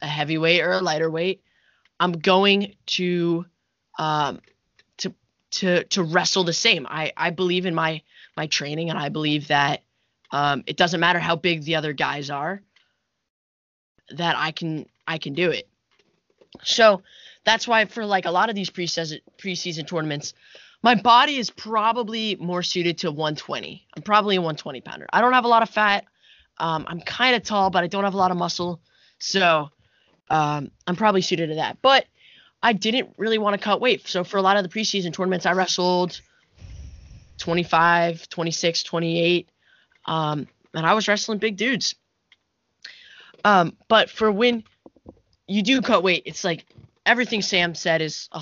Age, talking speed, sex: 20-39, 170 wpm, female